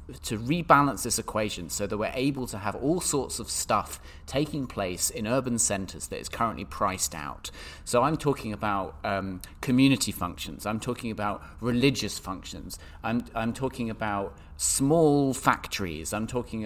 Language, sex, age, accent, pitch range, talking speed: English, male, 30-49, British, 95-130 Hz, 160 wpm